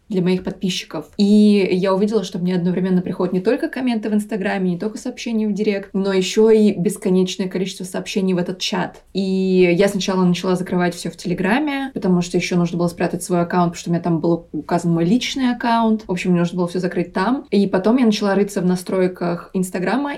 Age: 20-39